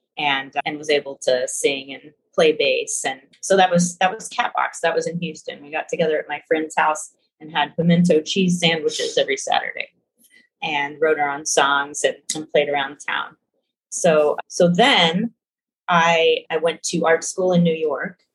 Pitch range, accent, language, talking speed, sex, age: 150-205 Hz, American, English, 185 wpm, female, 30-49